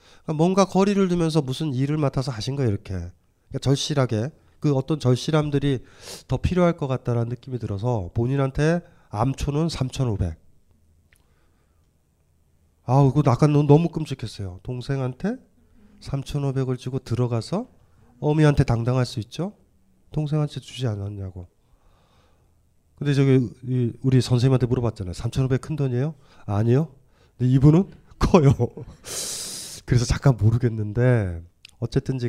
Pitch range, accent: 100-145 Hz, native